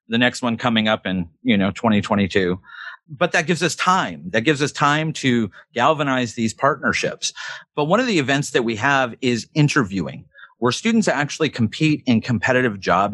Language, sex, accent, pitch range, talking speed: English, male, American, 110-150 Hz, 180 wpm